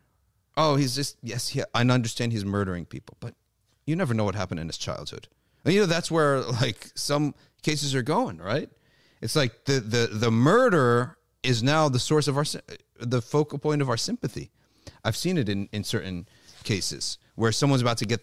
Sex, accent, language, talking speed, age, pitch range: male, American, English, 200 wpm, 40-59, 100-135 Hz